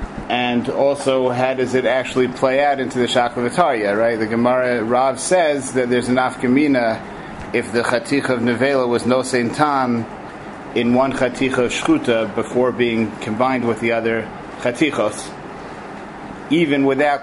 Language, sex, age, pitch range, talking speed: English, male, 30-49, 115-130 Hz, 155 wpm